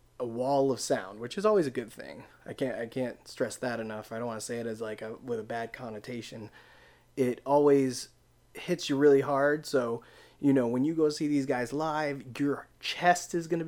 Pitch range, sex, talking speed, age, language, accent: 120-140 Hz, male, 225 wpm, 20-39, English, American